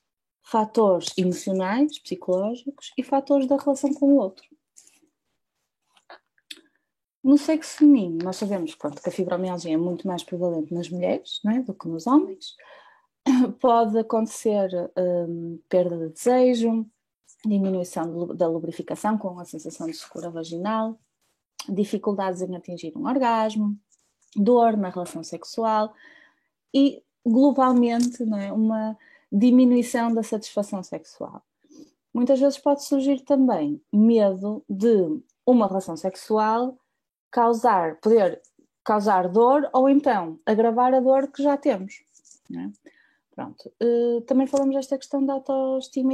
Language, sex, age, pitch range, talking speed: Portuguese, female, 20-39, 185-270 Hz, 125 wpm